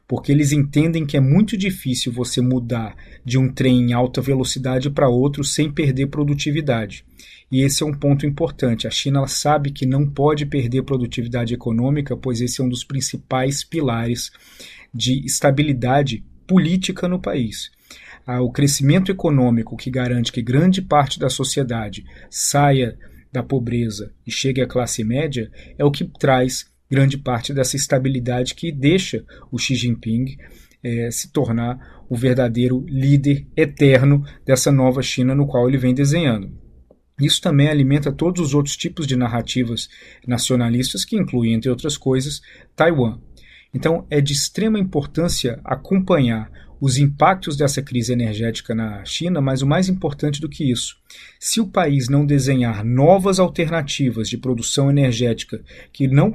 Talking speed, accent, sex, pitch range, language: 150 wpm, Brazilian, male, 125-145 Hz, Portuguese